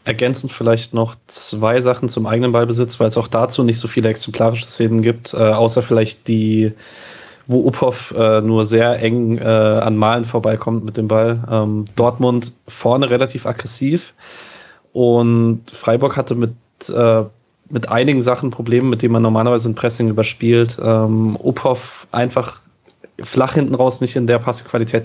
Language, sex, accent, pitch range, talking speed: German, male, German, 110-125 Hz, 155 wpm